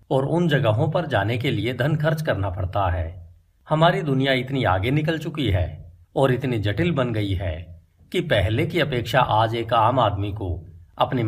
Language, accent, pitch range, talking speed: Hindi, native, 95-145 Hz, 185 wpm